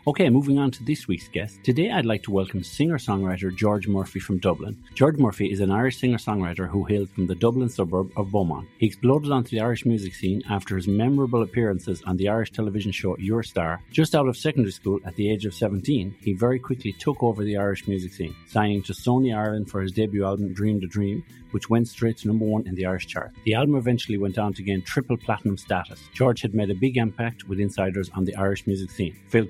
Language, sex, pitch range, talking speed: English, male, 95-115 Hz, 230 wpm